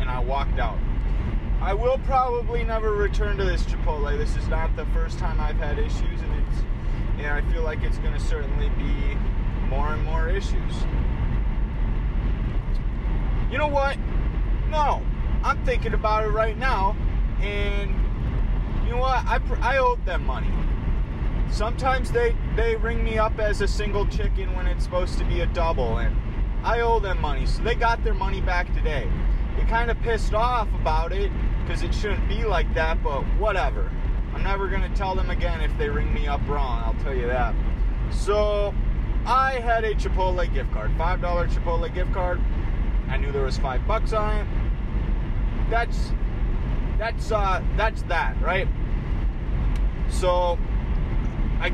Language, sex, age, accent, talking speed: English, male, 20-39, American, 165 wpm